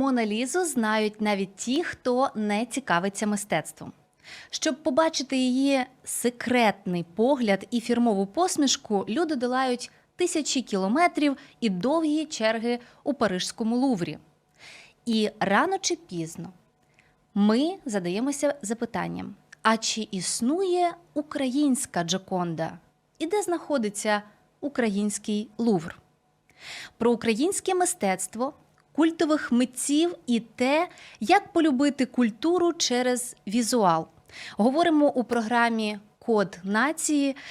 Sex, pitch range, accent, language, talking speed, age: female, 210-295 Hz, native, Ukrainian, 100 wpm, 20-39